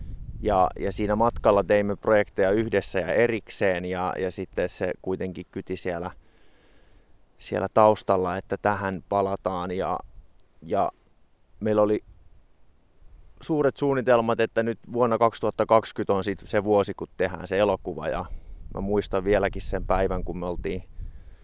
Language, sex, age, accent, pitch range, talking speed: Finnish, male, 20-39, native, 90-100 Hz, 135 wpm